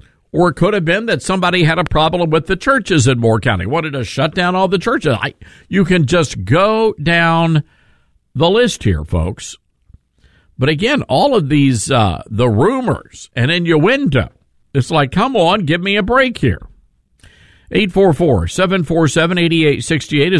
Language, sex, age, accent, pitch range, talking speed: English, male, 50-69, American, 110-170 Hz, 160 wpm